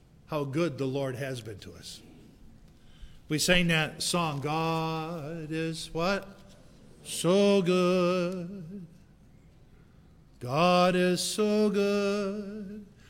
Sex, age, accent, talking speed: male, 50-69, American, 95 wpm